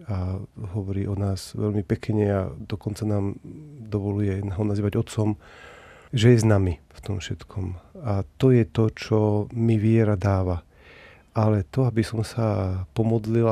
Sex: male